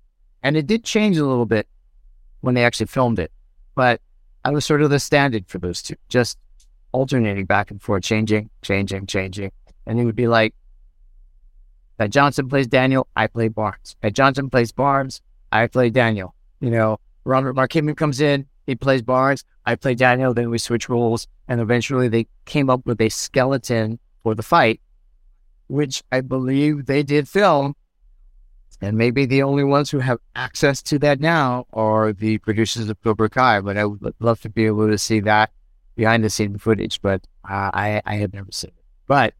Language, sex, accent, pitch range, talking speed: English, male, American, 100-130 Hz, 185 wpm